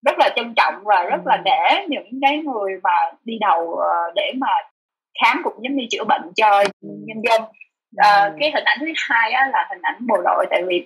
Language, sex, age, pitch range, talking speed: Vietnamese, female, 20-39, 220-350 Hz, 205 wpm